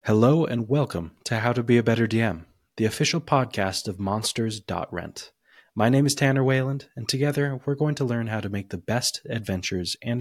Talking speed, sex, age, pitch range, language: 195 wpm, male, 20-39, 95-135 Hz, English